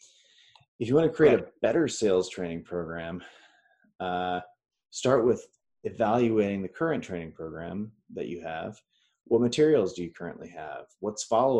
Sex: male